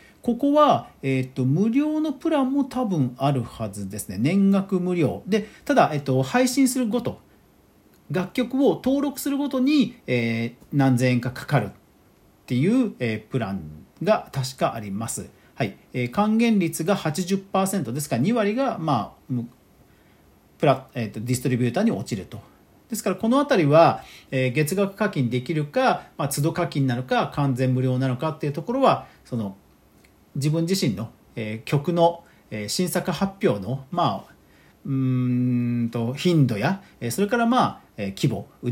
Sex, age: male, 40-59